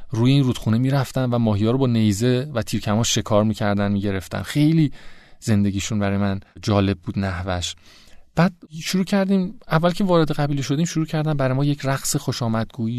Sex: male